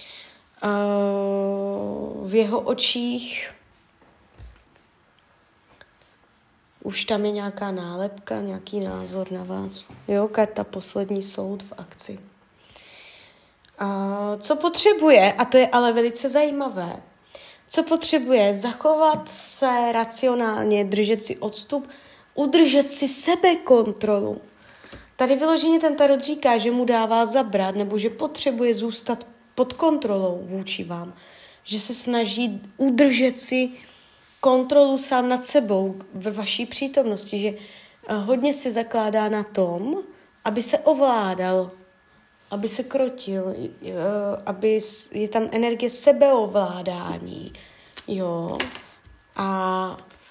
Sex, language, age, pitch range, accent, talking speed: female, Czech, 20-39, 200-260 Hz, native, 105 wpm